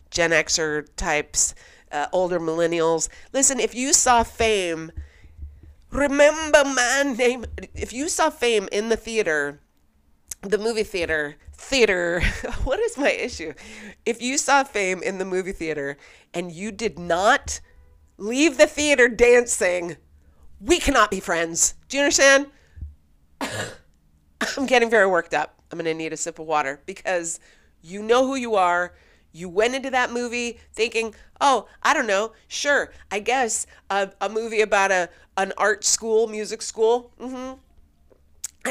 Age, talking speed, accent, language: 40-59, 145 wpm, American, English